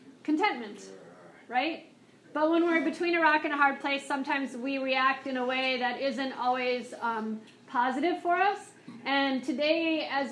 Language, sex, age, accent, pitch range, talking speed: English, female, 40-59, American, 245-285 Hz, 165 wpm